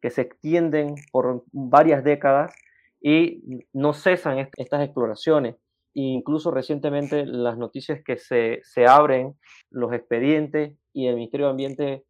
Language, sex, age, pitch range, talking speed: Spanish, male, 20-39, 125-155 Hz, 135 wpm